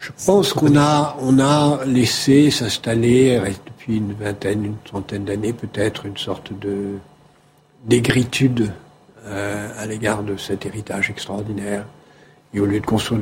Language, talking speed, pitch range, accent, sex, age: French, 140 wpm, 105-135 Hz, French, male, 60-79